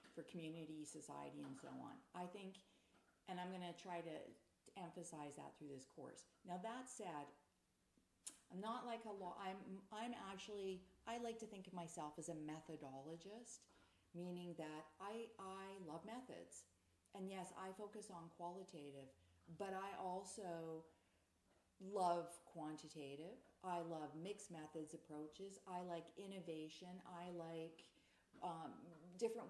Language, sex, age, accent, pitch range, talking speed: English, female, 40-59, American, 155-190 Hz, 135 wpm